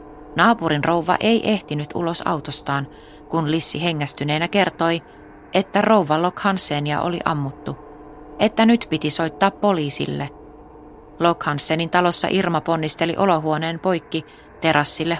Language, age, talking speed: Finnish, 30-49, 115 wpm